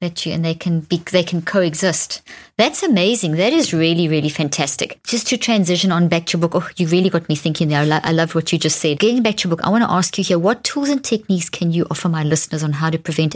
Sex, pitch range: female, 155-180 Hz